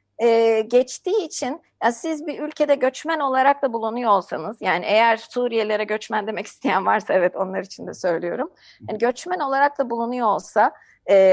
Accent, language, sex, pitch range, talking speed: native, Turkish, female, 215-280 Hz, 165 wpm